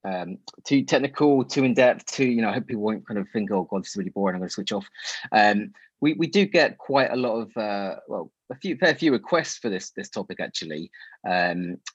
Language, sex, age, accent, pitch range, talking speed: English, male, 30-49, British, 100-135 Hz, 240 wpm